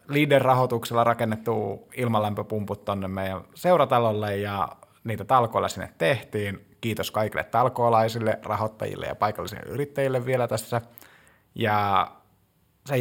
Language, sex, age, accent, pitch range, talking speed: Finnish, male, 20-39, native, 105-130 Hz, 100 wpm